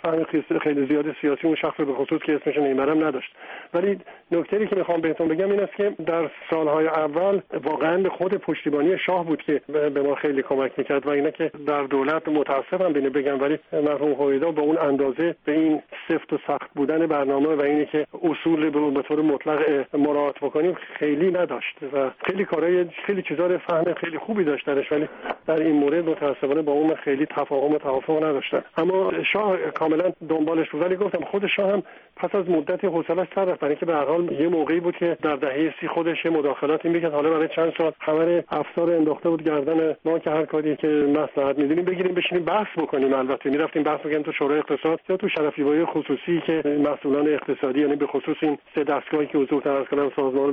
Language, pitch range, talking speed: Persian, 145-170 Hz, 190 wpm